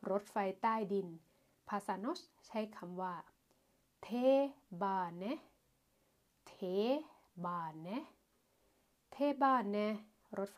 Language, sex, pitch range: Thai, female, 195-250 Hz